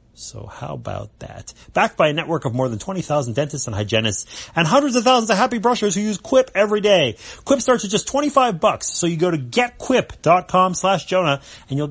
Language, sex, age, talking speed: English, male, 30-49, 210 wpm